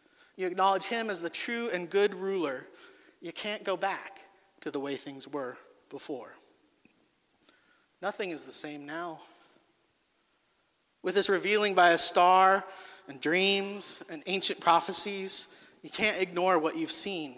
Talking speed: 140 wpm